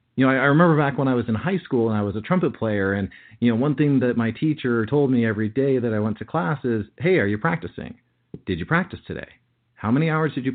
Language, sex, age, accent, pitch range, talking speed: English, male, 40-59, American, 110-145 Hz, 275 wpm